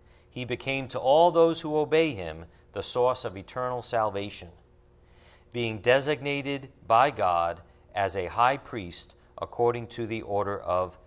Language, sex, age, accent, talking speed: English, male, 50-69, American, 140 wpm